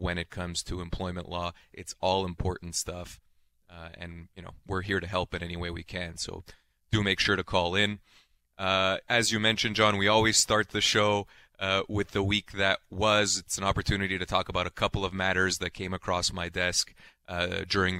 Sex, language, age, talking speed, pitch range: male, English, 30-49, 210 wpm, 90-105 Hz